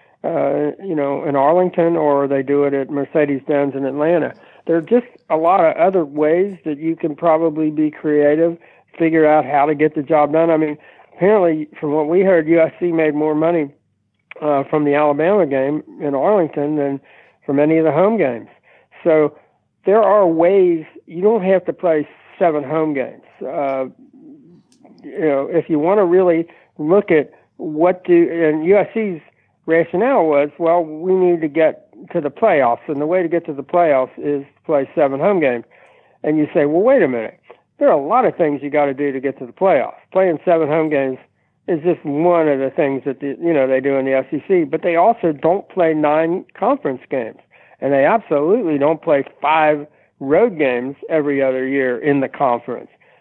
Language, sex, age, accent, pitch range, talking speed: English, male, 60-79, American, 145-175 Hz, 195 wpm